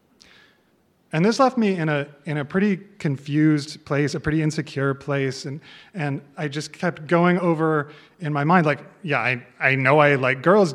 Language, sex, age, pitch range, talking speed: English, male, 30-49, 150-195 Hz, 185 wpm